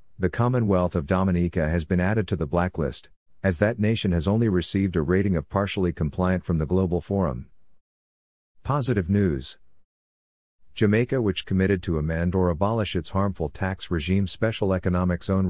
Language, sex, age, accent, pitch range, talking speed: English, male, 50-69, American, 85-100 Hz, 160 wpm